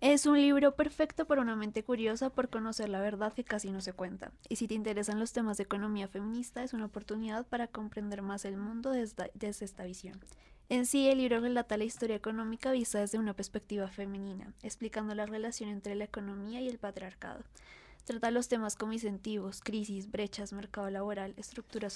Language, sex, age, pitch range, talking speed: Spanish, female, 20-39, 205-245 Hz, 190 wpm